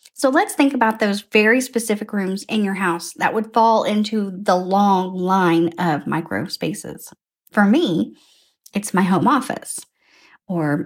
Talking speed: 155 wpm